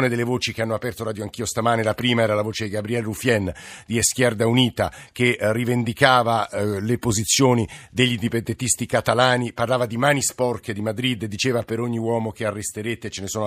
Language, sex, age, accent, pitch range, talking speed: Italian, male, 50-69, native, 105-125 Hz, 185 wpm